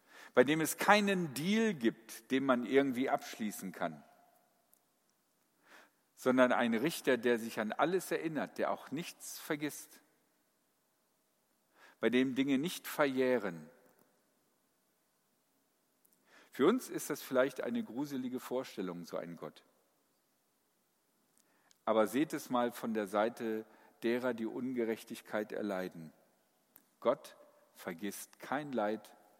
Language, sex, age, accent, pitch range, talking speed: German, male, 50-69, German, 110-150 Hz, 110 wpm